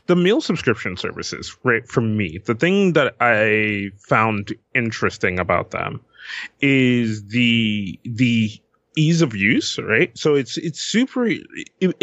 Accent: American